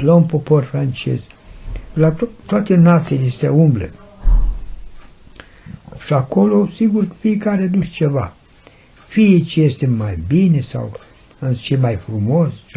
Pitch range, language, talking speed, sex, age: 100-140 Hz, Romanian, 125 wpm, male, 60-79